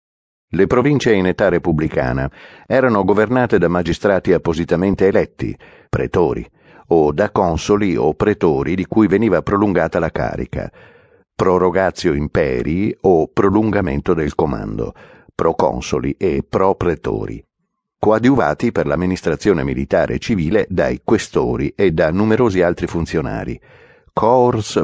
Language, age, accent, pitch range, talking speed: Italian, 50-69, native, 85-100 Hz, 110 wpm